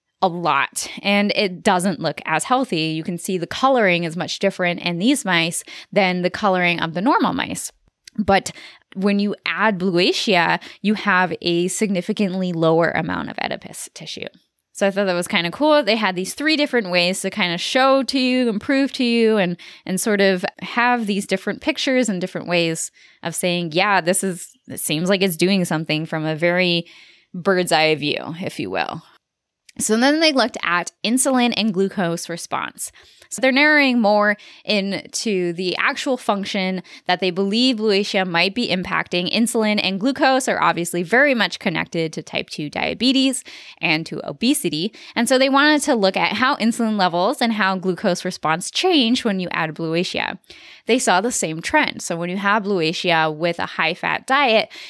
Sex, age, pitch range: female, 10-29, 175-230 Hz